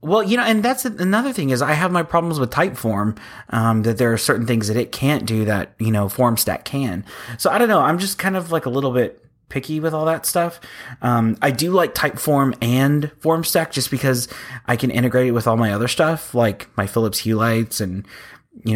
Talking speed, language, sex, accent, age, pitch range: 240 wpm, English, male, American, 30-49, 110-135 Hz